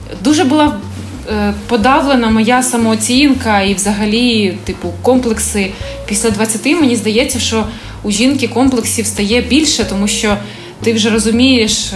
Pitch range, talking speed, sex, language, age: 210-265 Hz, 125 wpm, female, Ukrainian, 20-39